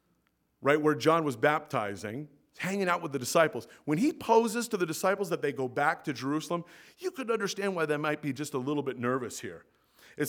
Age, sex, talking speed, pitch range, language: 40-59, male, 210 wpm, 145-215 Hz, English